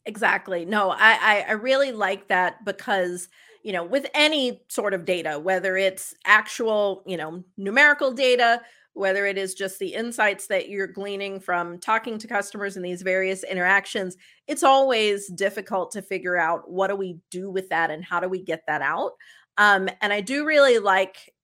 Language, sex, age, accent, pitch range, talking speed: English, female, 30-49, American, 180-225 Hz, 180 wpm